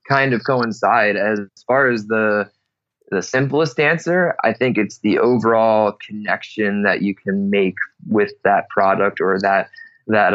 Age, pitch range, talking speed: 20-39, 105-125 Hz, 150 wpm